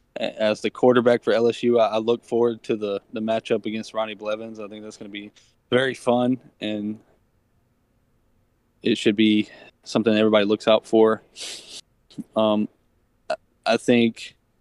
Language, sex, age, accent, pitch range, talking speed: English, male, 20-39, American, 105-115 Hz, 145 wpm